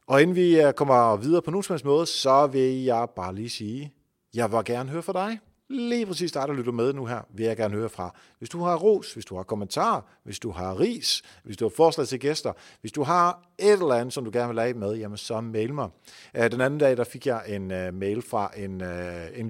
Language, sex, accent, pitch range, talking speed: Danish, male, native, 105-145 Hz, 235 wpm